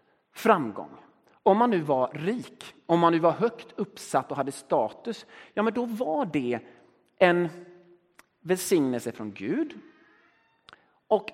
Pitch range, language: 155-230 Hz, Swedish